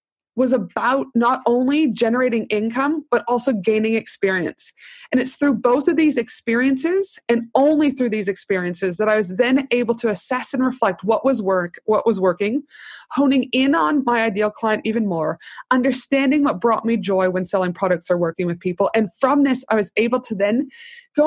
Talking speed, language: 185 wpm, English